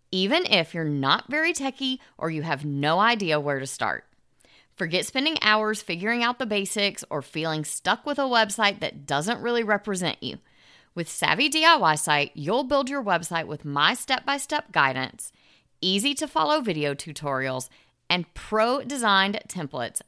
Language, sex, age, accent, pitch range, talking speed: English, female, 30-49, American, 150-235 Hz, 155 wpm